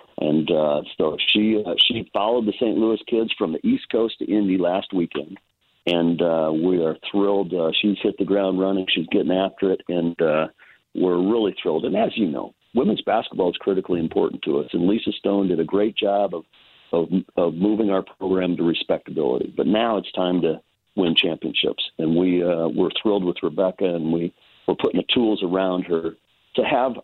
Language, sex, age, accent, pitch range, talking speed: English, male, 50-69, American, 85-100 Hz, 195 wpm